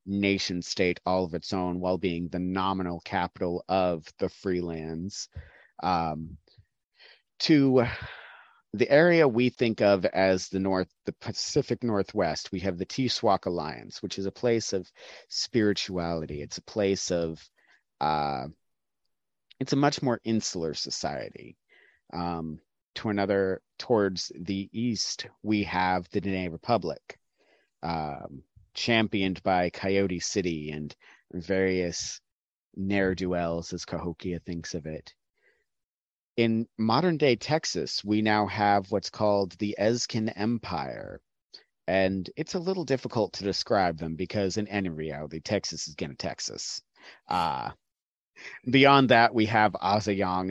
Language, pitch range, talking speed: English, 85-110 Hz, 130 wpm